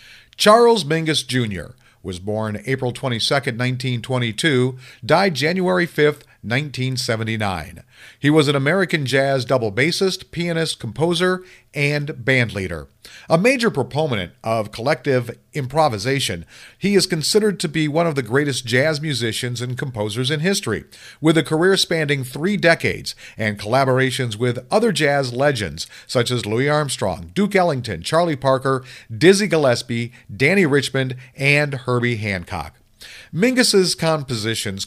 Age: 50-69